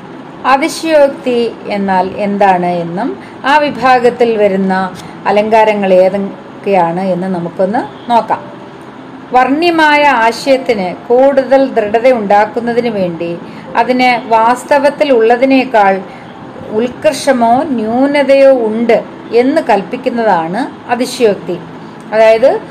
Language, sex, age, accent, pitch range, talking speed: Malayalam, female, 30-49, native, 210-270 Hz, 75 wpm